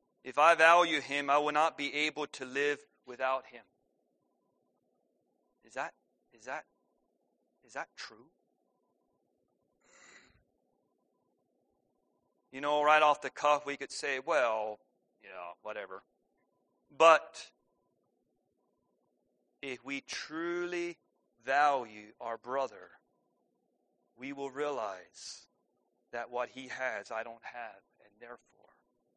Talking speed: 105 wpm